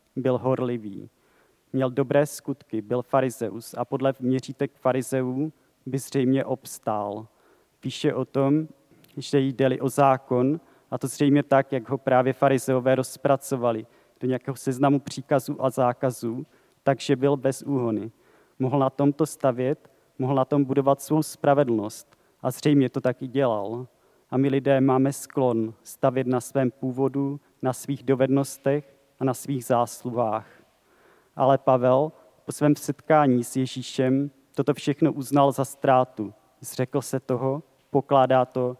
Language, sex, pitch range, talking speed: Czech, male, 125-140 Hz, 140 wpm